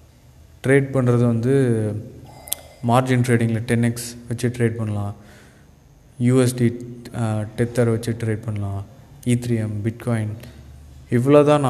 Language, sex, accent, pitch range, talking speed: Tamil, male, native, 110-125 Hz, 90 wpm